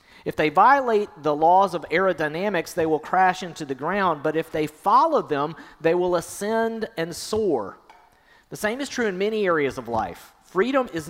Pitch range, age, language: 145-200 Hz, 40-59, English